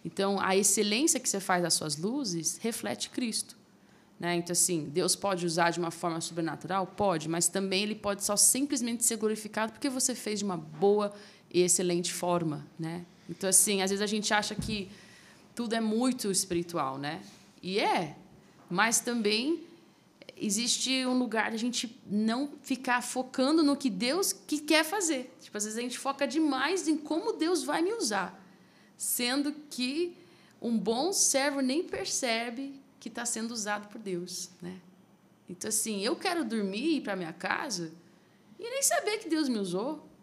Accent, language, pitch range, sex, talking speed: Brazilian, Portuguese, 195-290 Hz, female, 165 wpm